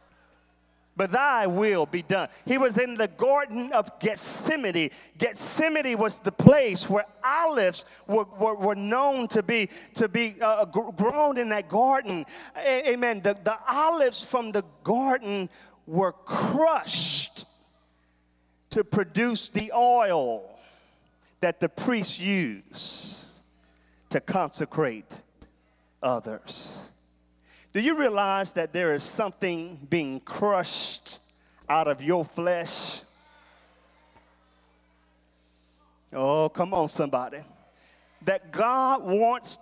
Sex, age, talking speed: male, 40-59, 110 wpm